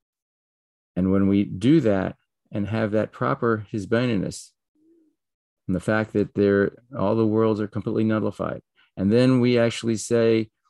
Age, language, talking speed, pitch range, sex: 40-59, English, 140 wpm, 95-110 Hz, male